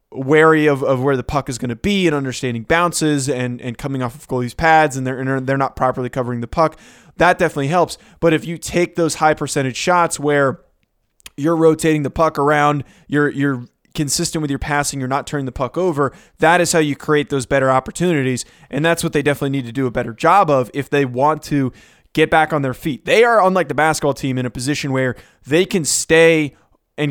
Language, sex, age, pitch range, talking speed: English, male, 20-39, 130-160 Hz, 225 wpm